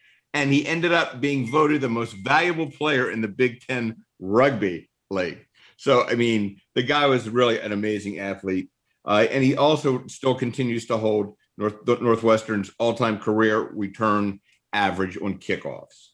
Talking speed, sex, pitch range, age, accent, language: 155 wpm, male, 115-145 Hz, 50-69, American, English